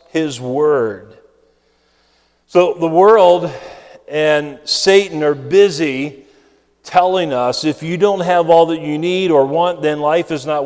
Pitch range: 140-185 Hz